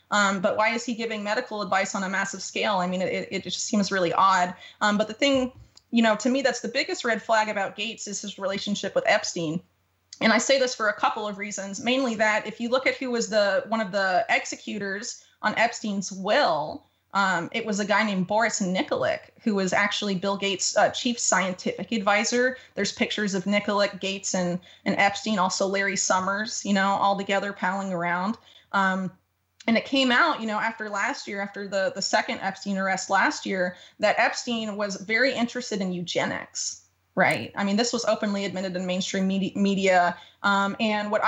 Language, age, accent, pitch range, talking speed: English, 20-39, American, 195-220 Hz, 200 wpm